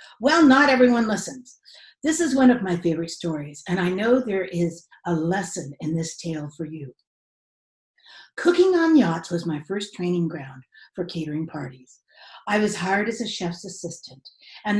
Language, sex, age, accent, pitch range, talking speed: English, female, 50-69, American, 175-255 Hz, 170 wpm